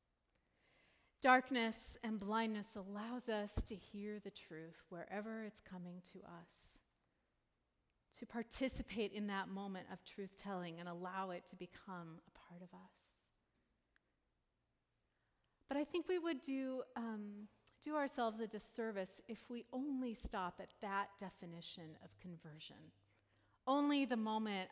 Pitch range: 185-240 Hz